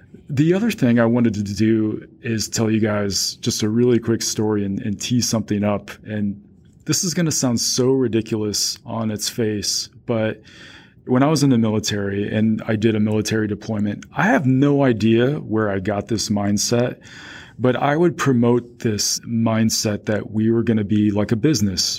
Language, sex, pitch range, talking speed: English, male, 105-120 Hz, 190 wpm